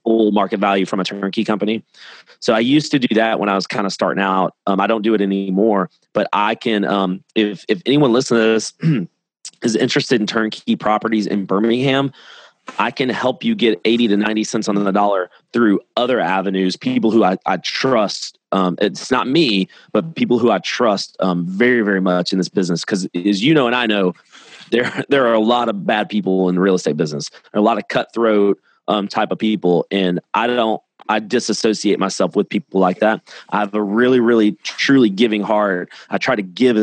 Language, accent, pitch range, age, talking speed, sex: English, American, 95-110 Hz, 30-49, 215 wpm, male